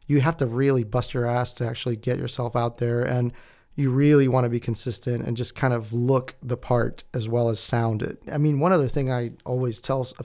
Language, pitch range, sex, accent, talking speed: English, 120-140 Hz, male, American, 240 wpm